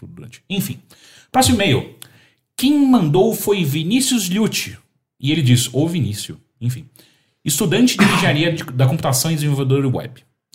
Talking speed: 135 wpm